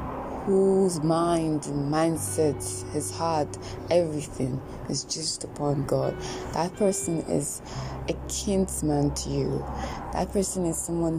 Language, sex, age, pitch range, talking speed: English, female, 20-39, 135-160 Hz, 120 wpm